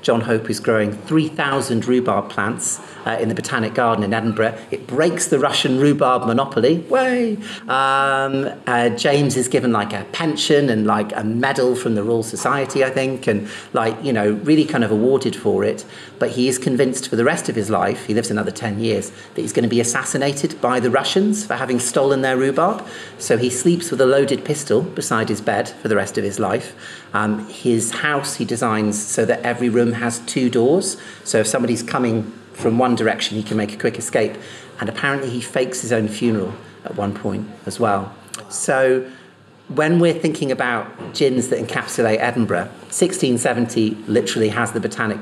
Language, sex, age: English, male, 40-59